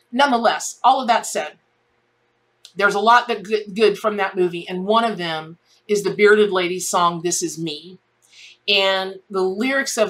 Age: 40-59